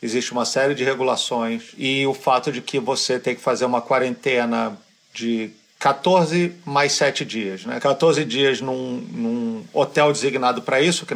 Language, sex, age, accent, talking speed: Portuguese, male, 40-59, Brazilian, 165 wpm